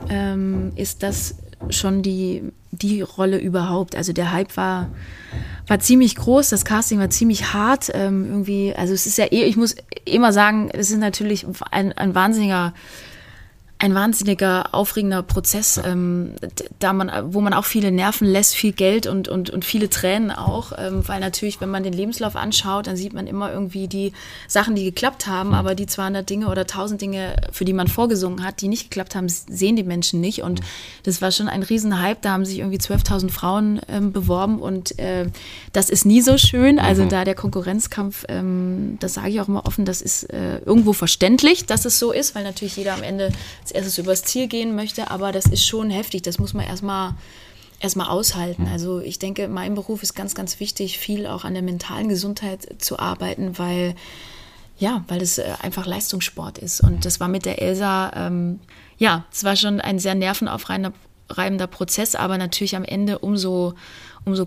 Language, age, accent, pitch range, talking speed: German, 20-39, German, 180-205 Hz, 190 wpm